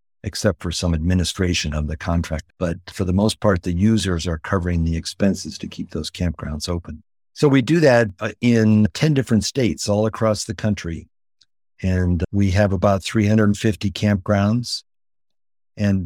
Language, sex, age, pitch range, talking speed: English, male, 50-69, 90-105 Hz, 155 wpm